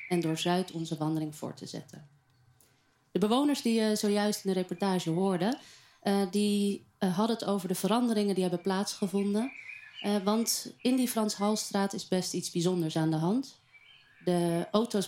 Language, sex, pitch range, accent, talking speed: Dutch, female, 165-205 Hz, Dutch, 155 wpm